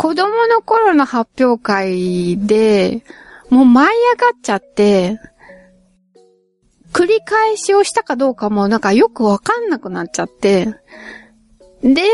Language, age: Japanese, 20-39